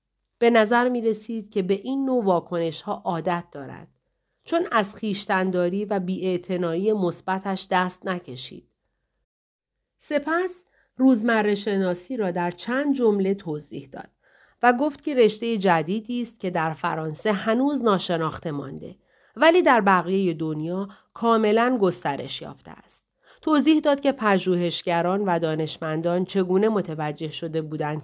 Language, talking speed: Persian, 120 wpm